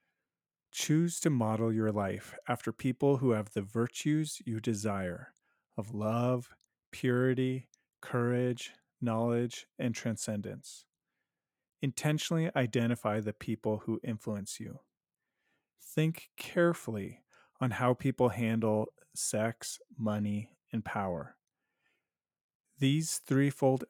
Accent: American